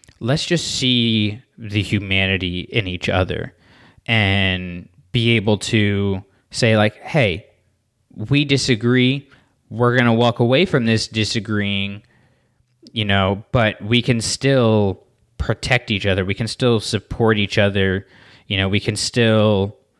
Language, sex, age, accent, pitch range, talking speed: English, male, 20-39, American, 105-125 Hz, 135 wpm